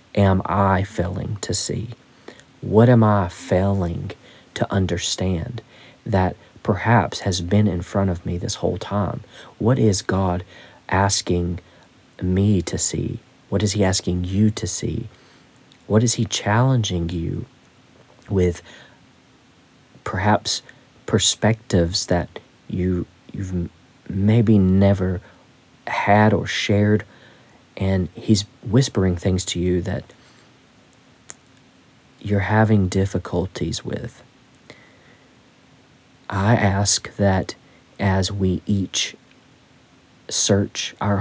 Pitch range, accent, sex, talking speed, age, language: 90-105 Hz, American, male, 100 wpm, 40-59, English